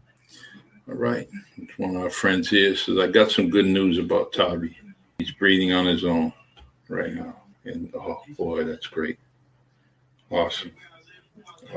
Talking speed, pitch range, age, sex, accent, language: 145 wpm, 85-135 Hz, 60-79, male, American, English